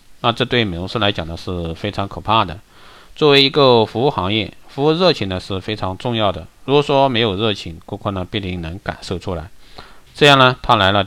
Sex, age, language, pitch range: male, 50-69, Chinese, 90-120 Hz